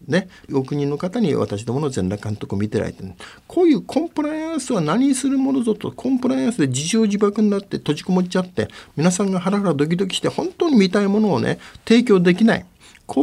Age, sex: 50-69, male